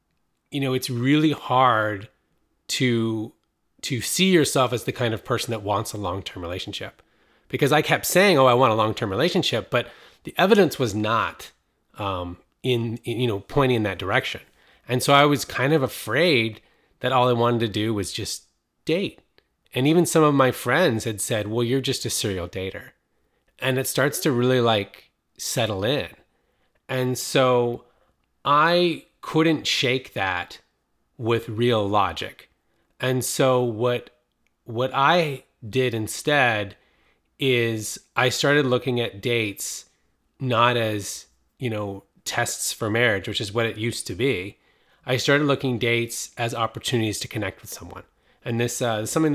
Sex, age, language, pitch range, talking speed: male, 30-49, English, 105-130 Hz, 160 wpm